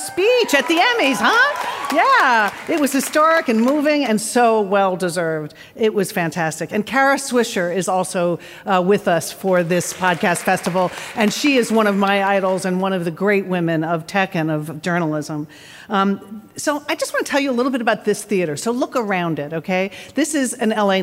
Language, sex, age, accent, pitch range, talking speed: English, female, 50-69, American, 180-230 Hz, 205 wpm